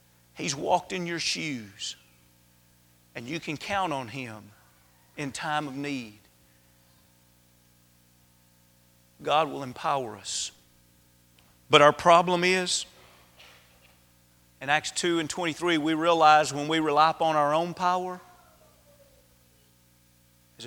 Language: English